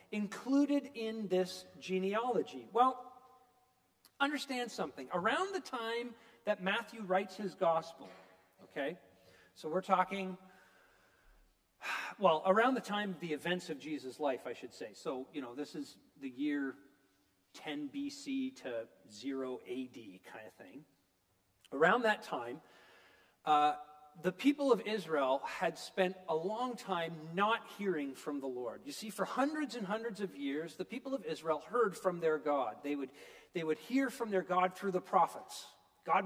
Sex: male